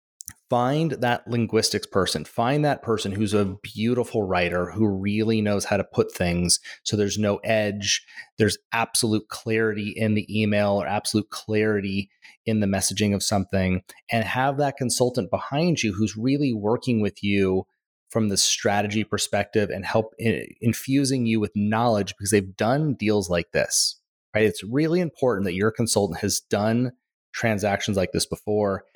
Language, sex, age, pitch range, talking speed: English, male, 30-49, 100-120 Hz, 160 wpm